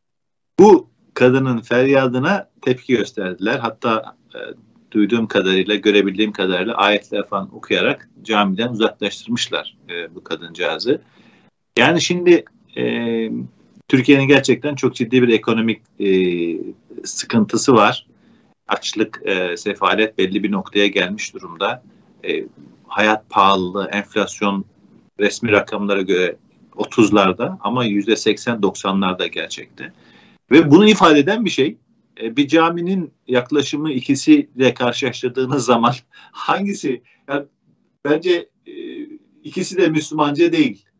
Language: Turkish